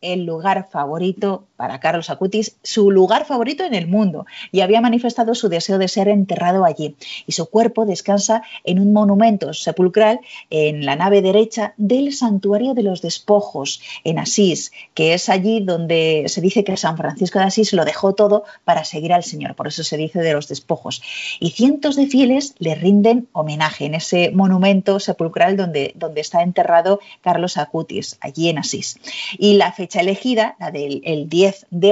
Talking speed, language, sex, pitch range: 175 wpm, Spanish, female, 170-220 Hz